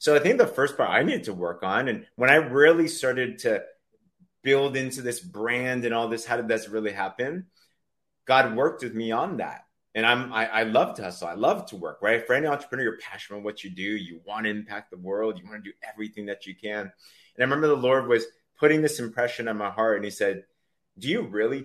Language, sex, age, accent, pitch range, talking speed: English, male, 30-49, American, 110-150 Hz, 245 wpm